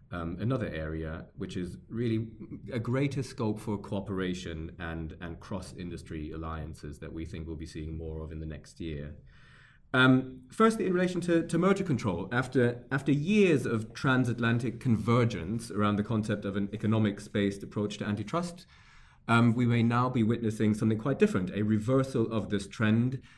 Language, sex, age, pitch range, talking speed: English, male, 30-49, 95-120 Hz, 165 wpm